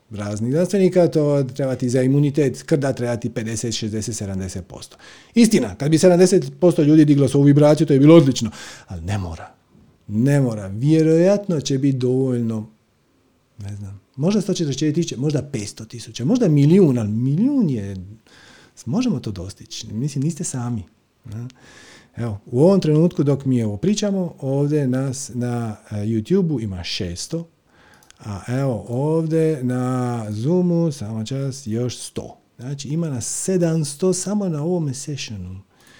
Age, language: 40-59, Croatian